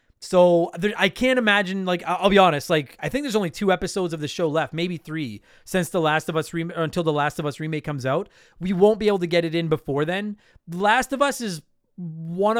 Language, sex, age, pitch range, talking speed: English, male, 30-49, 150-210 Hz, 240 wpm